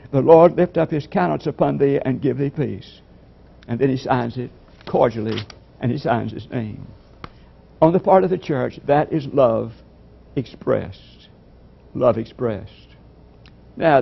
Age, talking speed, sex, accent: 60-79, 155 wpm, male, American